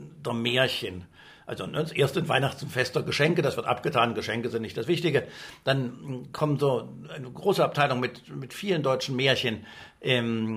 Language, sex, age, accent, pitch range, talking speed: German, male, 60-79, German, 125-160 Hz, 155 wpm